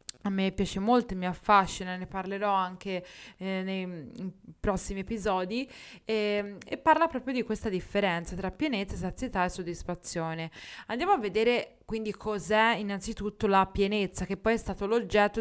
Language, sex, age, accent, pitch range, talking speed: Italian, female, 20-39, native, 195-245 Hz, 150 wpm